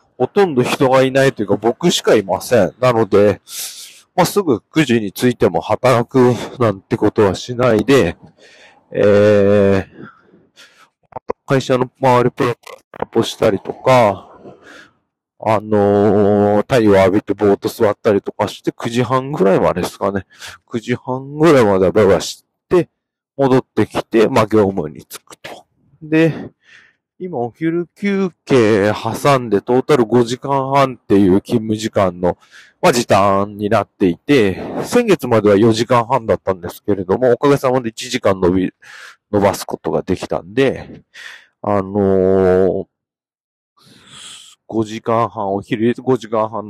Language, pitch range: Japanese, 100-130 Hz